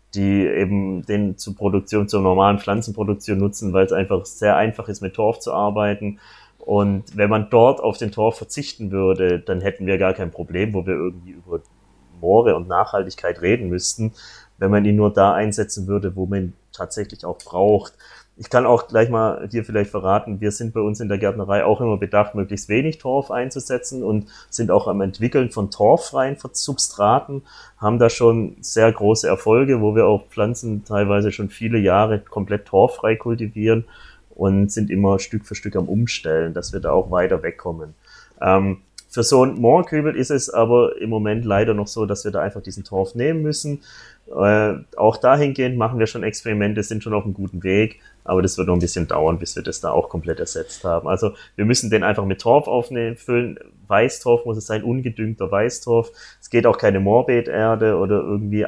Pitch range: 100-115 Hz